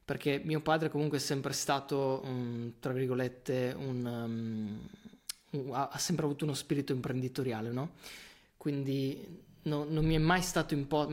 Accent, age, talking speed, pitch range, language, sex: native, 20-39, 145 wpm, 125-150 Hz, Italian, male